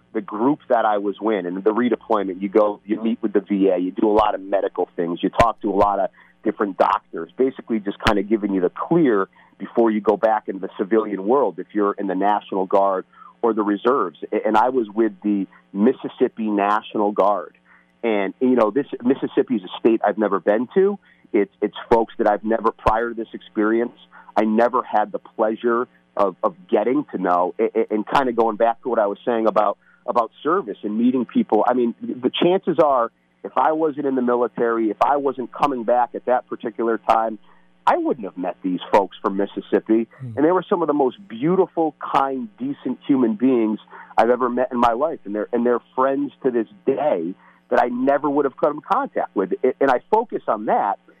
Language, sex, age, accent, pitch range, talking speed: English, male, 40-59, American, 105-130 Hz, 210 wpm